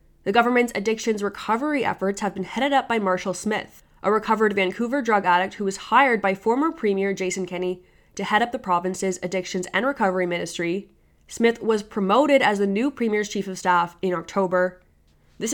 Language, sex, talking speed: English, female, 180 wpm